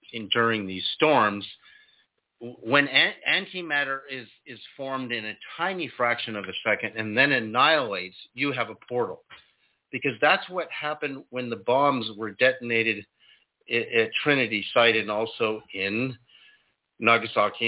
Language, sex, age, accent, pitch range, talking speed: English, male, 50-69, American, 105-135 Hz, 135 wpm